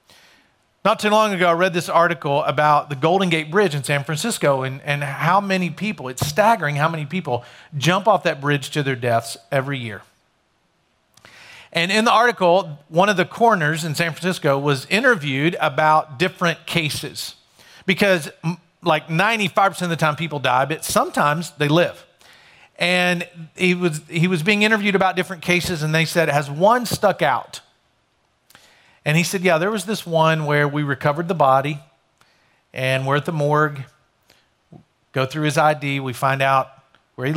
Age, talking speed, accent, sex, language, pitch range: 40-59, 170 wpm, American, male, English, 135-175 Hz